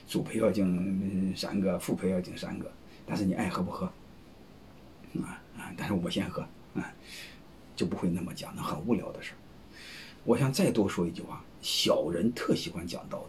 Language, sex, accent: Chinese, male, native